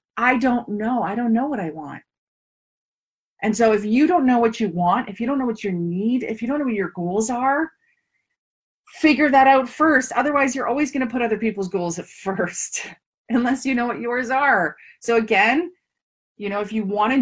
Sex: female